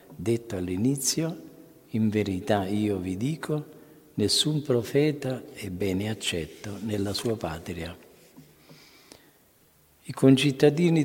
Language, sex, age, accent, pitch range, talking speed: Italian, male, 50-69, native, 95-130 Hz, 90 wpm